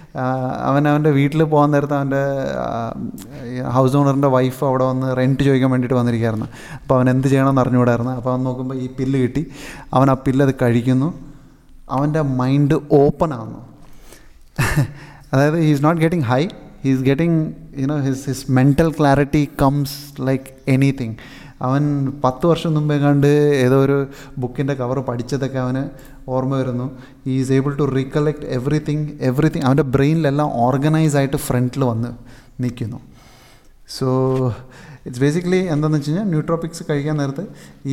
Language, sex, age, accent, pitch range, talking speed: Malayalam, male, 30-49, native, 130-150 Hz, 135 wpm